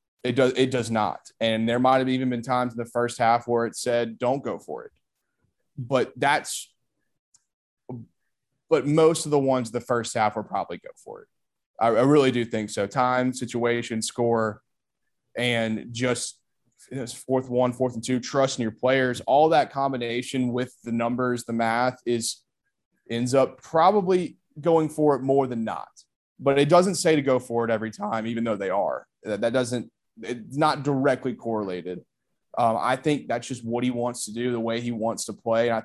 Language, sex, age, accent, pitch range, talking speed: English, male, 20-39, American, 115-135 Hz, 195 wpm